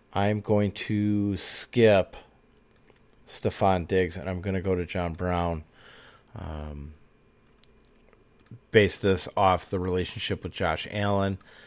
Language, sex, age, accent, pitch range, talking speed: English, male, 30-49, American, 80-95 Hz, 120 wpm